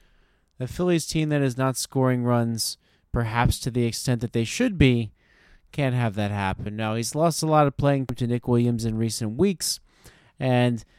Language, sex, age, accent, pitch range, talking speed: English, male, 30-49, American, 120-150 Hz, 185 wpm